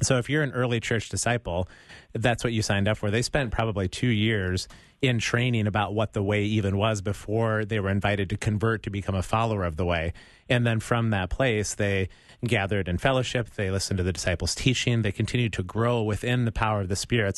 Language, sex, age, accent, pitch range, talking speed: English, male, 30-49, American, 100-120 Hz, 220 wpm